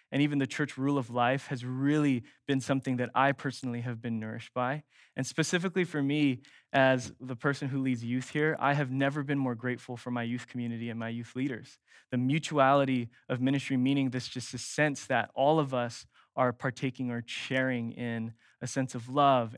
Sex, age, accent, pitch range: male, 20-39, American, 120-140 Hz